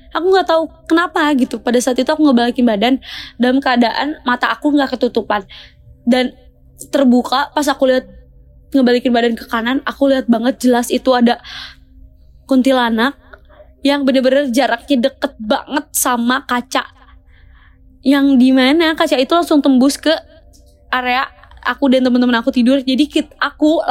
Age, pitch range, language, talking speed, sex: 20-39, 245-285 Hz, Indonesian, 140 wpm, female